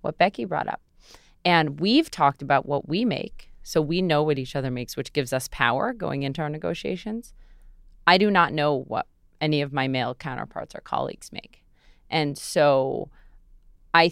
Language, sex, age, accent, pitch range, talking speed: English, female, 30-49, American, 140-170 Hz, 180 wpm